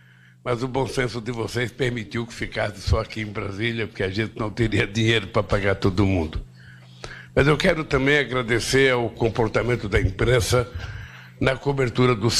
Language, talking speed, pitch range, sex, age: Portuguese, 170 wpm, 100-120 Hz, male, 60-79